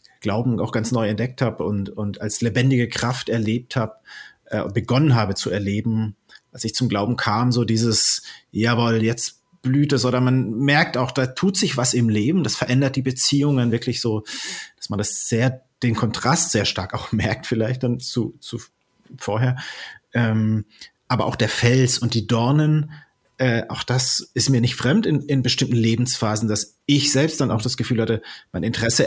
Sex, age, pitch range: male, 40-59, 110-130 Hz